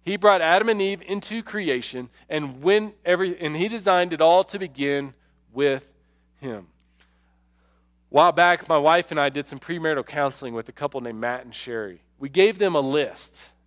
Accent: American